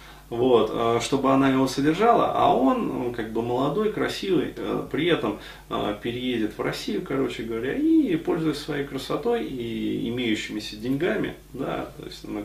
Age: 30-49